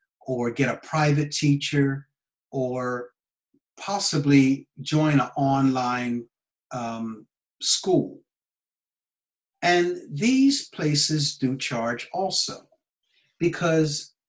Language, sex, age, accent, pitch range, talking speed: English, male, 60-79, American, 125-165 Hz, 80 wpm